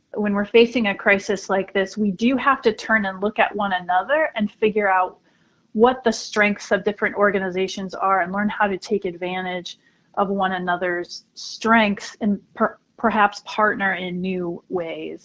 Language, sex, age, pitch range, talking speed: English, female, 30-49, 180-210 Hz, 175 wpm